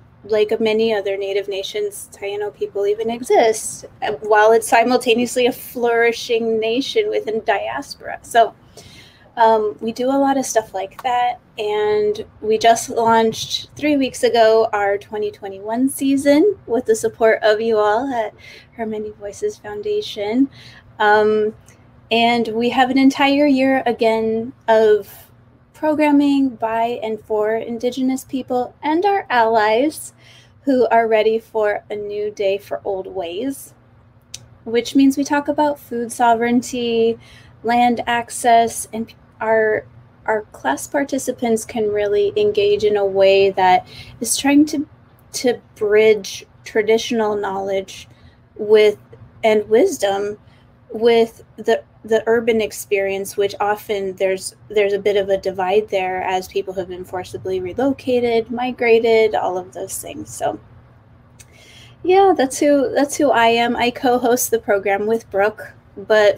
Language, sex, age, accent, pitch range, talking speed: English, female, 20-39, American, 205-245 Hz, 135 wpm